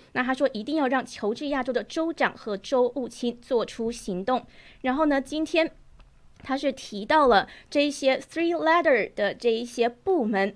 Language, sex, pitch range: Chinese, female, 235-290 Hz